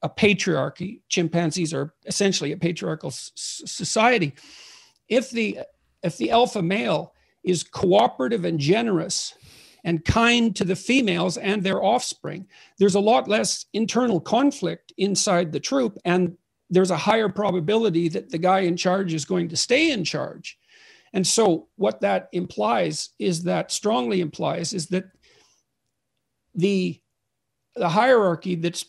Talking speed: 135 wpm